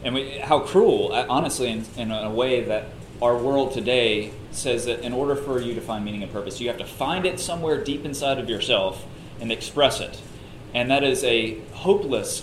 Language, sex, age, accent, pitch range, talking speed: English, male, 30-49, American, 115-145 Hz, 200 wpm